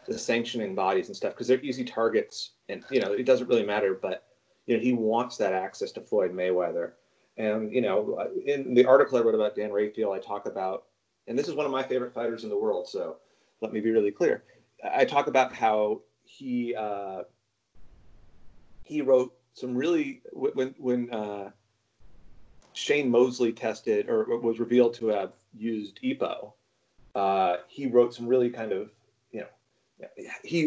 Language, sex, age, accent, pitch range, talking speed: English, male, 30-49, American, 110-135 Hz, 170 wpm